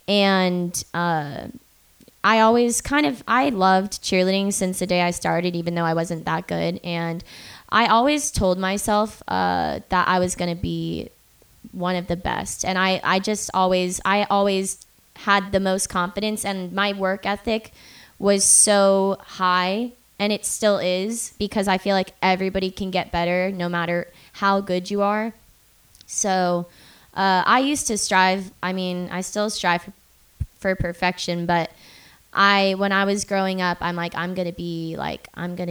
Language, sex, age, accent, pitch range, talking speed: English, female, 20-39, American, 170-195 Hz, 170 wpm